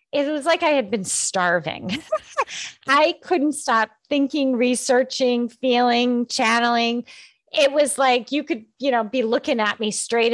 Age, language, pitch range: 30-49, English, 190-255 Hz